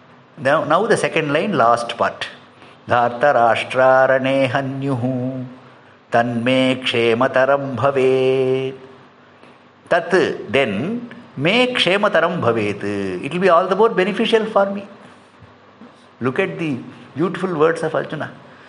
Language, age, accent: English, 50-69, Indian